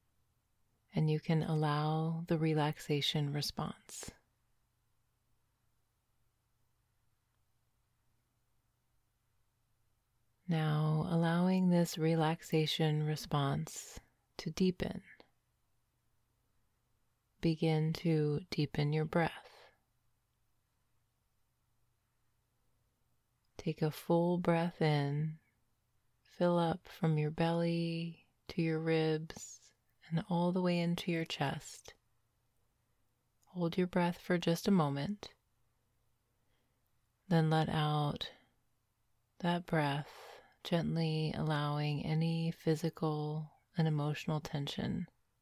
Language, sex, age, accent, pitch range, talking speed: English, female, 30-49, American, 115-160 Hz, 75 wpm